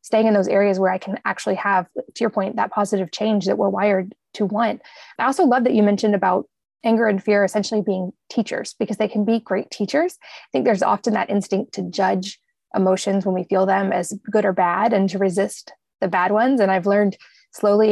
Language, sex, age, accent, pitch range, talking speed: English, female, 20-39, American, 195-220 Hz, 220 wpm